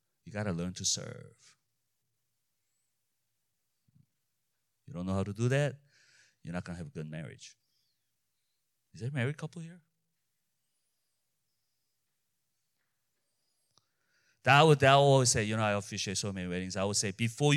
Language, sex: English, male